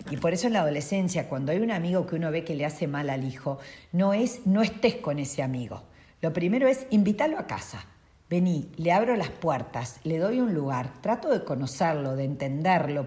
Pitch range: 145-190 Hz